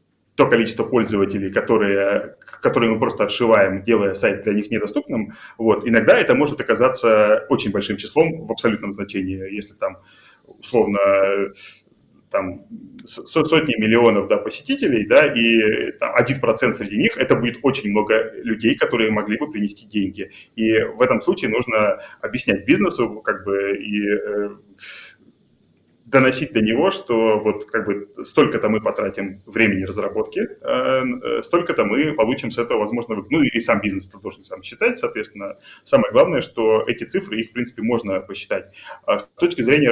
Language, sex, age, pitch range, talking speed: Russian, male, 30-49, 105-130 Hz, 150 wpm